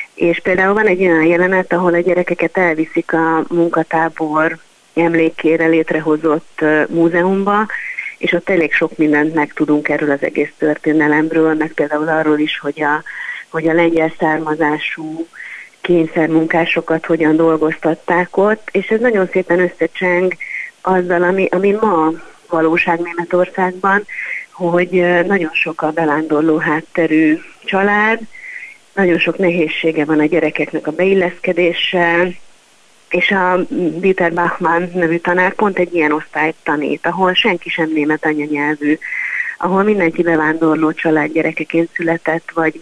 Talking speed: 125 wpm